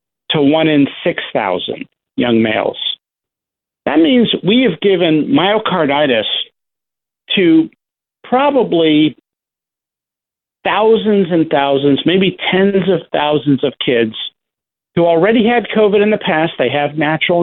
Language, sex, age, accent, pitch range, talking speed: English, male, 50-69, American, 130-170 Hz, 115 wpm